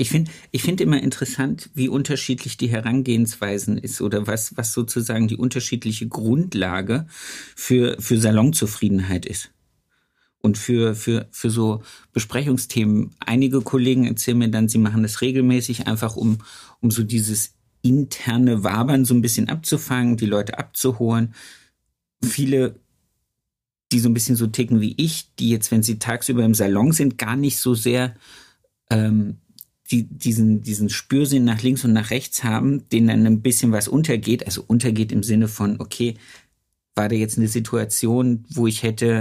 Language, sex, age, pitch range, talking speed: German, male, 50-69, 110-130 Hz, 160 wpm